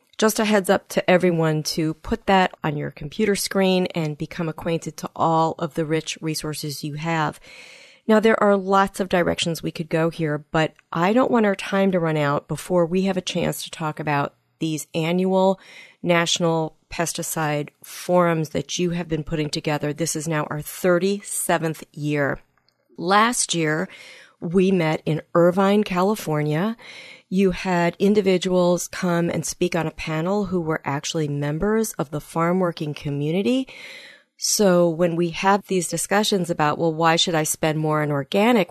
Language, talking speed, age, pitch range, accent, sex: English, 165 wpm, 40-59, 155-200 Hz, American, female